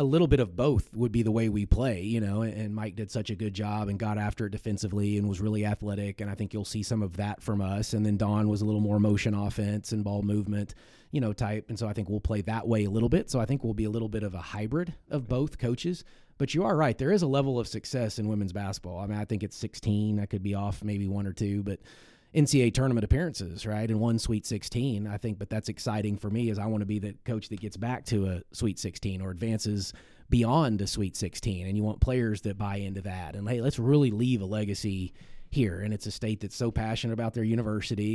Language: English